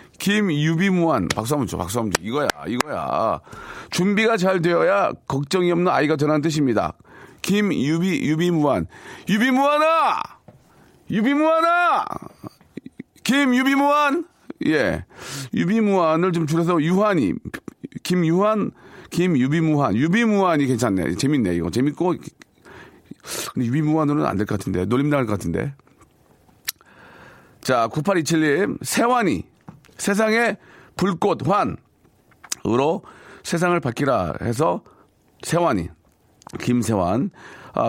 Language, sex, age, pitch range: Korean, male, 40-59, 115-180 Hz